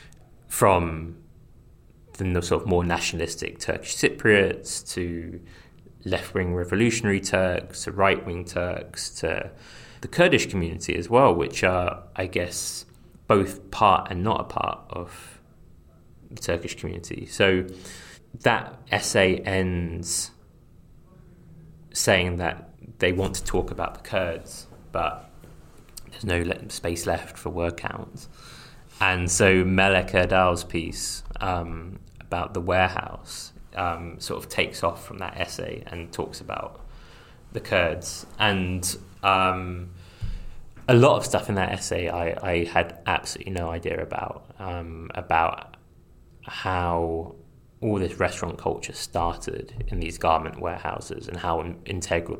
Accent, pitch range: British, 85-95 Hz